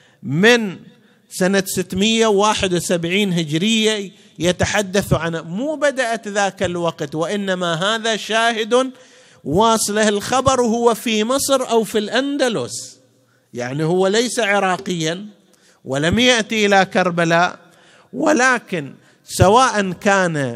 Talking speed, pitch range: 95 wpm, 145-210 Hz